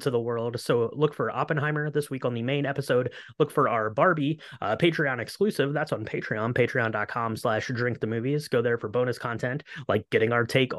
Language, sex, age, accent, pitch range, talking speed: English, male, 20-39, American, 120-150 Hz, 205 wpm